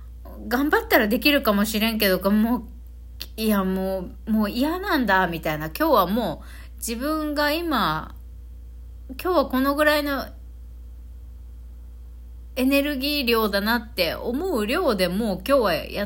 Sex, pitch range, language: female, 160-240 Hz, Japanese